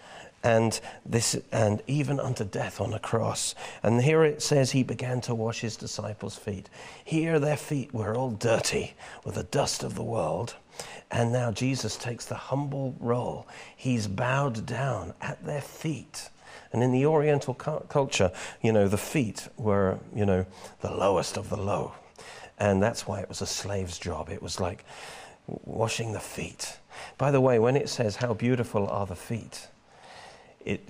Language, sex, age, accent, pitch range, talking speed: English, male, 40-59, British, 95-125 Hz, 175 wpm